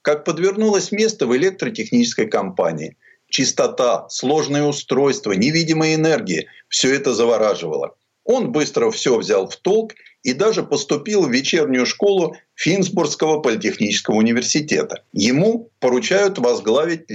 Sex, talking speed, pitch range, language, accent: male, 110 wpm, 145-215 Hz, Russian, native